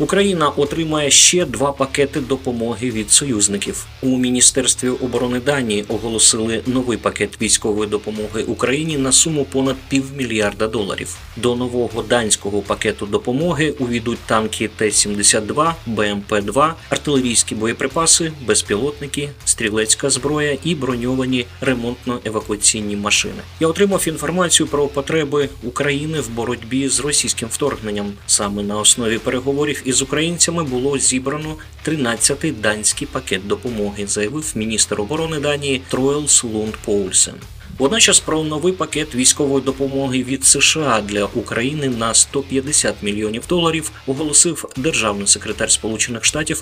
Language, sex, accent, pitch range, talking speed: Ukrainian, male, native, 105-145 Hz, 115 wpm